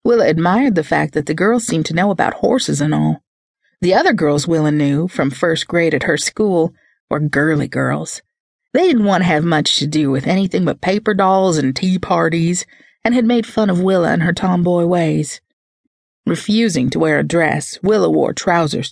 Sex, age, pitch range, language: female, 40-59, 160-220 Hz, English